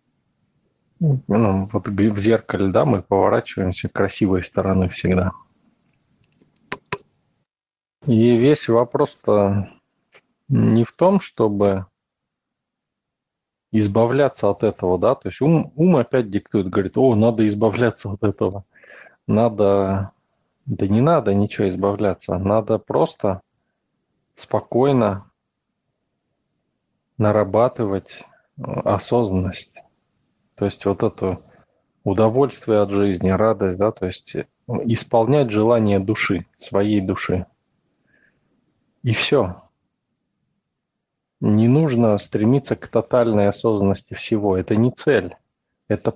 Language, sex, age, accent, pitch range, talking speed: Russian, male, 20-39, native, 100-115 Hz, 95 wpm